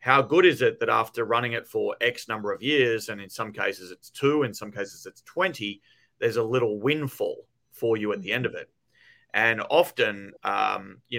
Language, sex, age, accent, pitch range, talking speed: English, male, 30-49, Australian, 105-170 Hz, 210 wpm